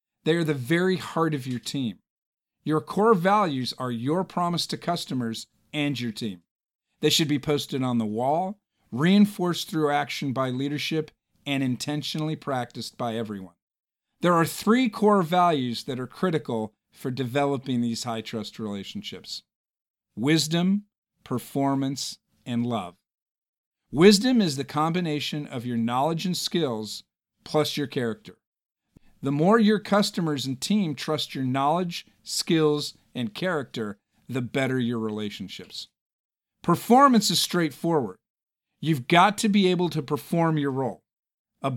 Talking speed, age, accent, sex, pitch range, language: 135 wpm, 50-69, American, male, 125-175 Hz, English